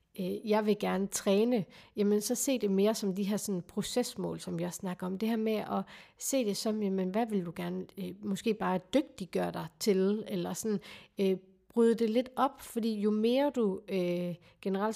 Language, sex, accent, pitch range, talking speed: Danish, female, native, 190-225 Hz, 195 wpm